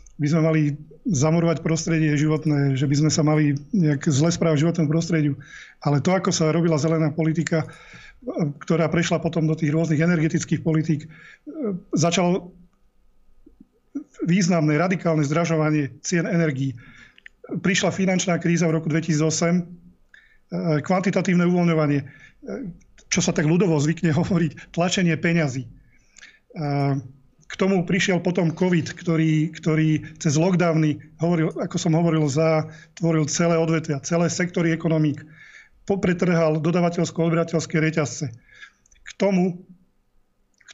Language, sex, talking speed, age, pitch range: Slovak, male, 120 wpm, 40-59, 155-175 Hz